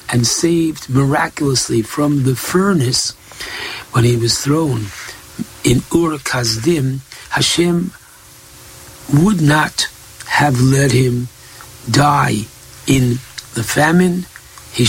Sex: male